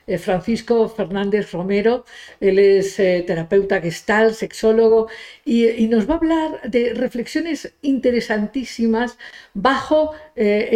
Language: Spanish